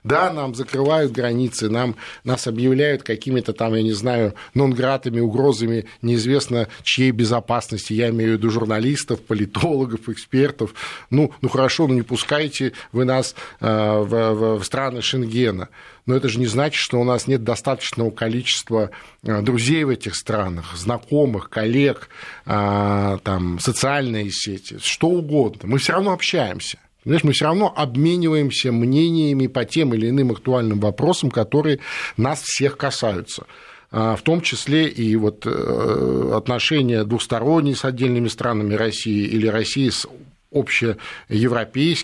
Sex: male